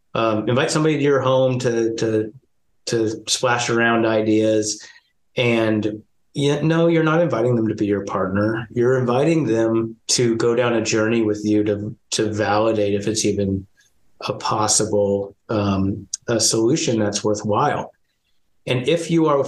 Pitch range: 105-125 Hz